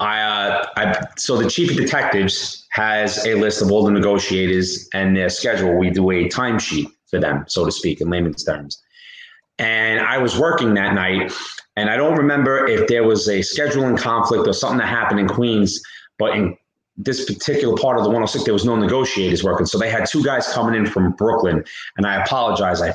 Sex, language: male, English